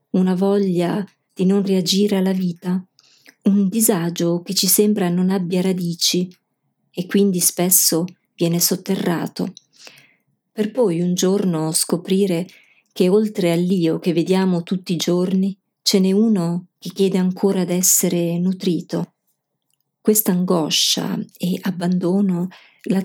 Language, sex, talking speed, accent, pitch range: Italian, female, 120 wpm, native, 175-195 Hz